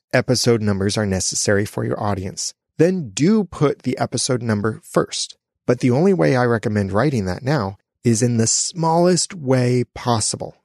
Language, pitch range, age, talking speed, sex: English, 100-130 Hz, 30-49, 165 wpm, male